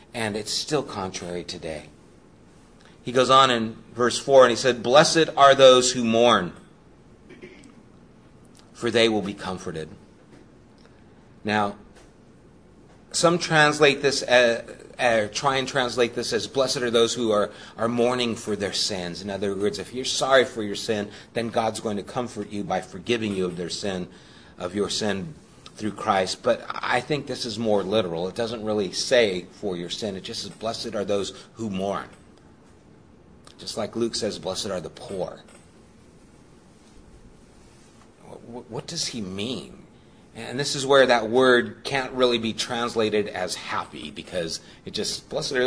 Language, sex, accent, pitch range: English, male, American, 105-125 Hz